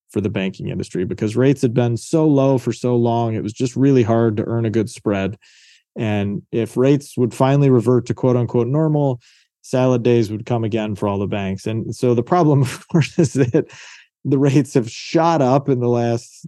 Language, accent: English, American